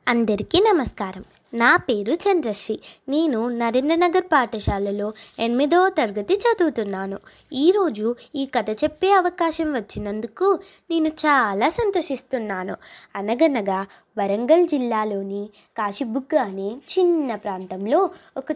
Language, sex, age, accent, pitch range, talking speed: Telugu, female, 20-39, native, 210-325 Hz, 90 wpm